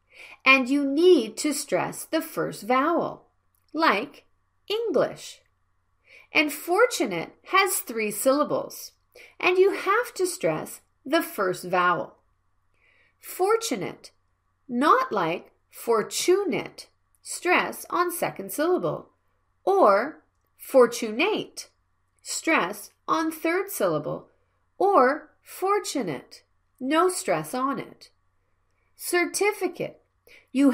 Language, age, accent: Korean, 40-59, American